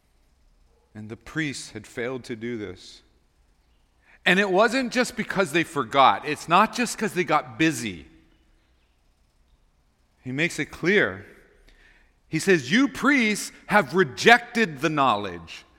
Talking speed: 130 wpm